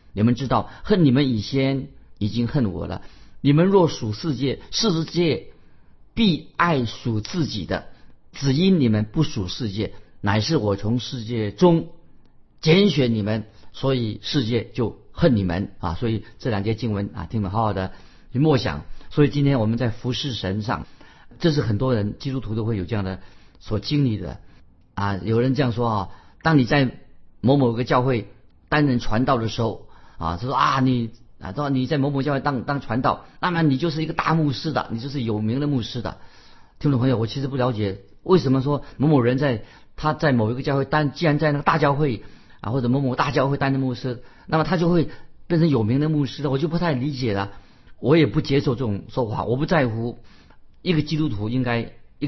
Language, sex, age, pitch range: Chinese, male, 50-69, 110-145 Hz